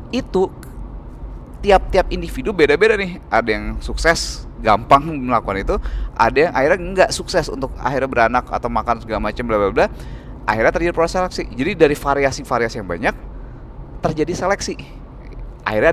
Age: 30-49